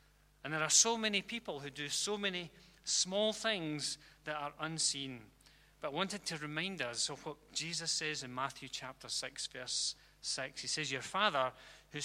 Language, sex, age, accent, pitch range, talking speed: English, male, 40-59, British, 140-170 Hz, 180 wpm